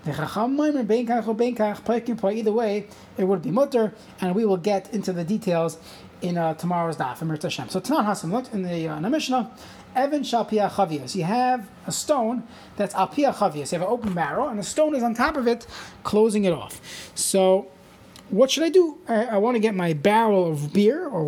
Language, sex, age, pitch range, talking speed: English, male, 30-49, 180-245 Hz, 175 wpm